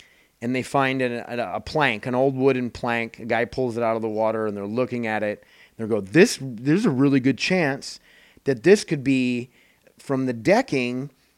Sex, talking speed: male, 200 wpm